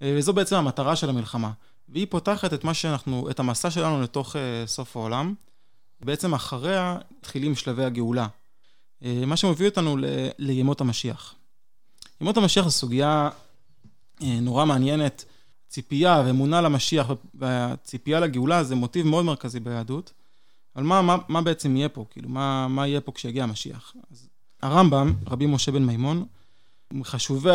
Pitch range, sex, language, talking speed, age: 125-155 Hz, male, Hebrew, 145 wpm, 20-39